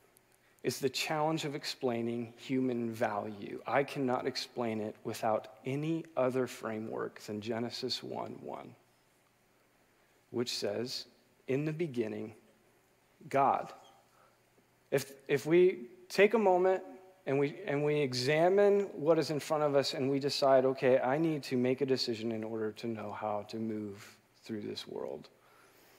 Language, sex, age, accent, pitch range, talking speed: English, male, 40-59, American, 115-140 Hz, 145 wpm